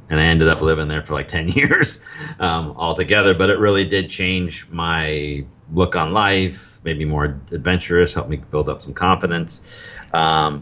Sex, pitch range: male, 75-90 Hz